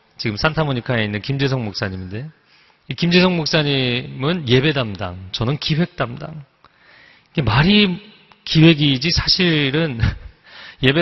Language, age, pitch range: Korean, 40-59, 125-160 Hz